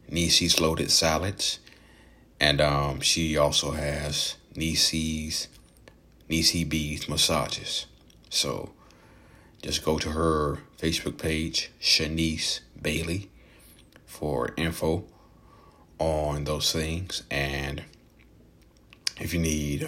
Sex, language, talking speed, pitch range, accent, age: male, English, 90 wpm, 75-85 Hz, American, 30-49